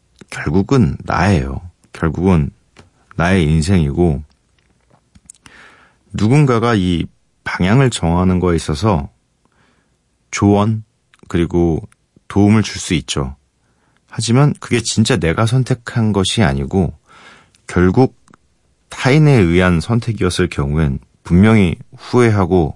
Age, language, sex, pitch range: 40-59, Korean, male, 80-115 Hz